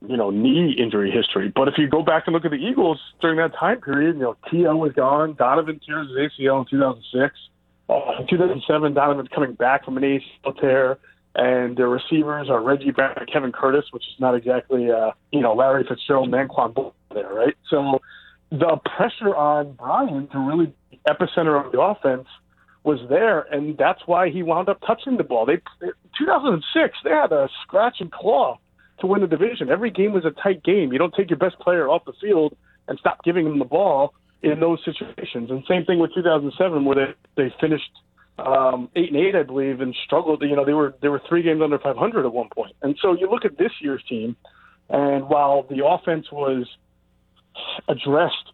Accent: American